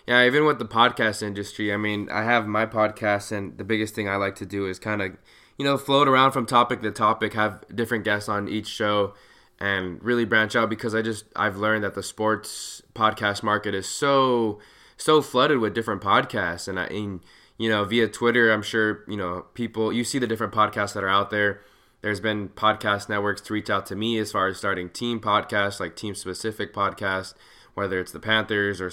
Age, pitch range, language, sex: 20-39, 100-115 Hz, English, male